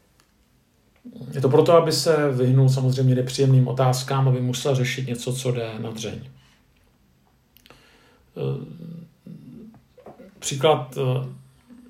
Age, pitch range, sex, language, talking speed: 50-69, 125-140 Hz, male, Czech, 90 wpm